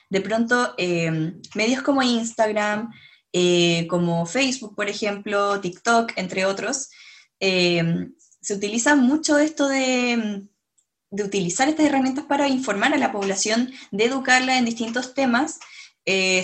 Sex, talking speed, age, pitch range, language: female, 130 wpm, 10-29, 190-240 Hz, Romanian